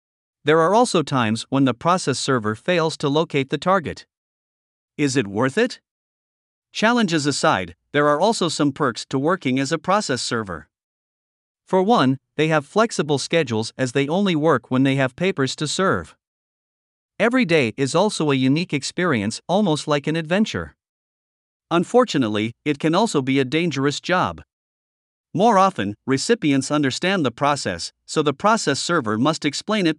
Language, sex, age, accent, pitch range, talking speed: English, male, 50-69, American, 135-180 Hz, 155 wpm